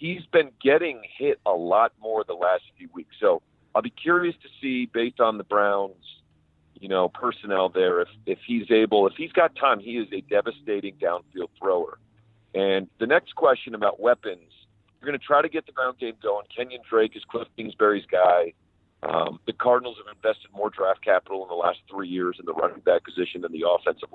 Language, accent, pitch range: English, American, 100-135 Hz